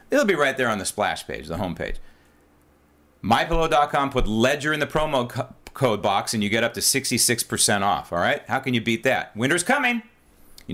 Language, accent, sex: English, American, male